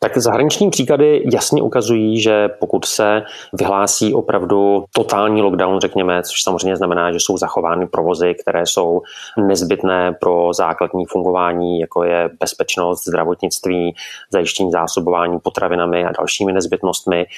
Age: 30-49